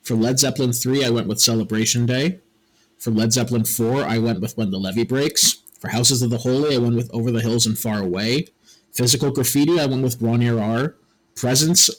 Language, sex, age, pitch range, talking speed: English, male, 30-49, 115-140 Hz, 210 wpm